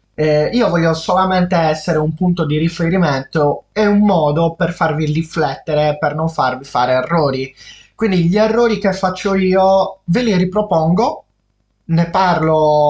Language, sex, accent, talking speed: Italian, male, native, 145 wpm